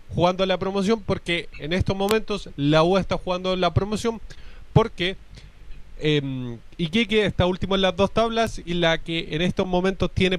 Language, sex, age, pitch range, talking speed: Spanish, male, 20-39, 155-195 Hz, 170 wpm